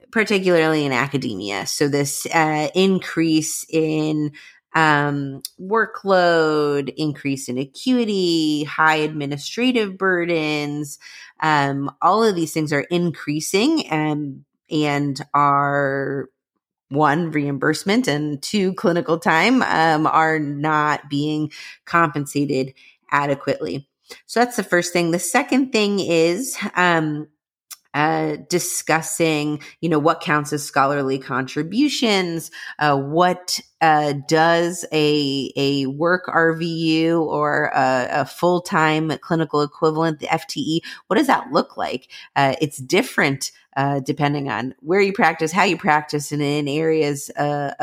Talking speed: 120 wpm